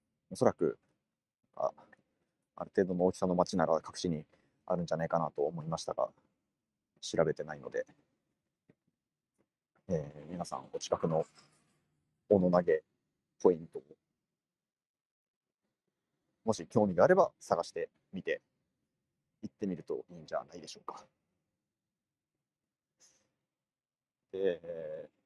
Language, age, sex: Japanese, 30-49, male